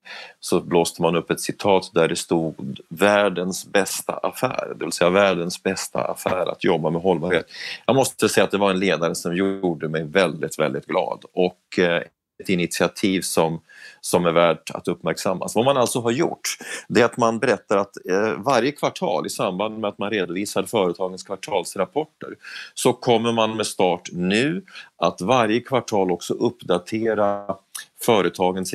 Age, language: 30-49, Swedish